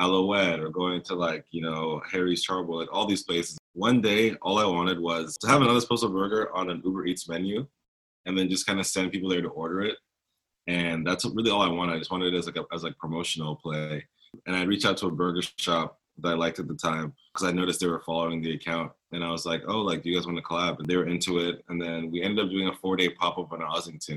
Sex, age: male, 20-39